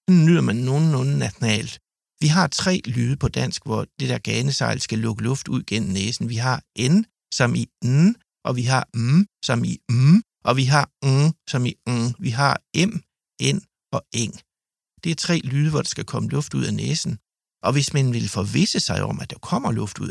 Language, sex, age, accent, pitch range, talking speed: English, male, 60-79, Danish, 125-170 Hz, 210 wpm